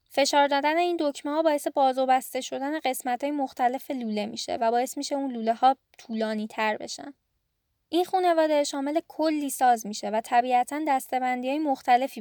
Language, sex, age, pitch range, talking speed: Persian, female, 10-29, 235-295 Hz, 165 wpm